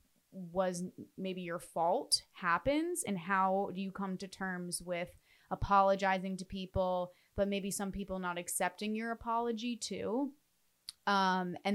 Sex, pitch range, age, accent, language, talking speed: female, 175-200 Hz, 20-39, American, English, 140 wpm